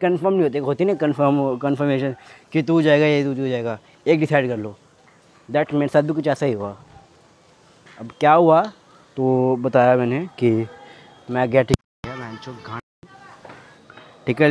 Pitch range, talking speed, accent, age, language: 125-150 Hz, 155 wpm, native, 20-39, Hindi